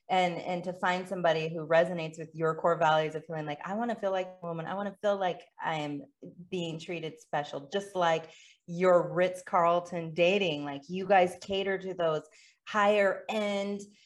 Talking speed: 185 wpm